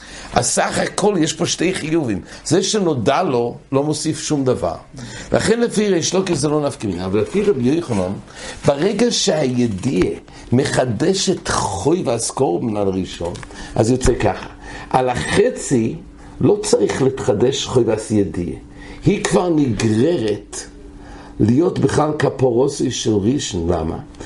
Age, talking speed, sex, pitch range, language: 60-79, 125 wpm, male, 115-170 Hz, English